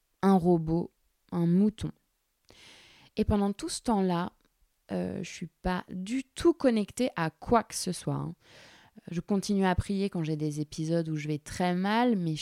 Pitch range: 155-190 Hz